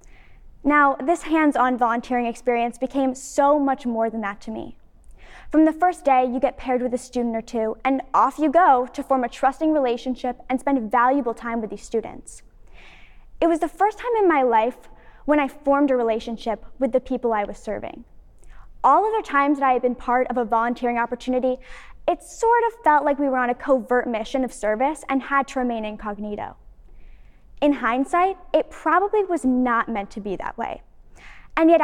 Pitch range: 235-285 Hz